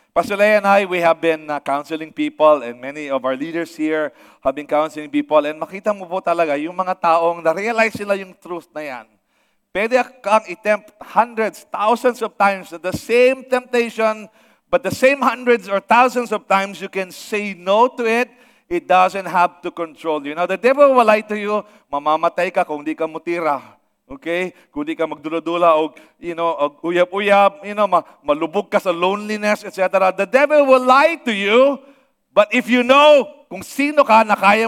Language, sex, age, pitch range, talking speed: English, male, 40-59, 165-220 Hz, 185 wpm